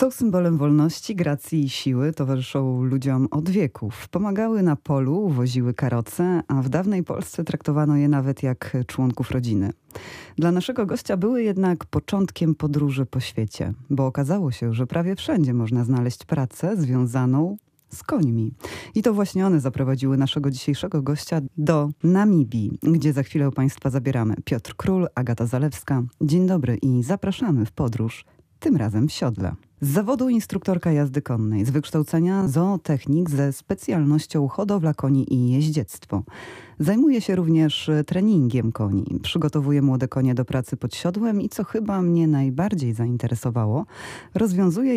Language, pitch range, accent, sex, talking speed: Polish, 130-180 Hz, native, female, 145 wpm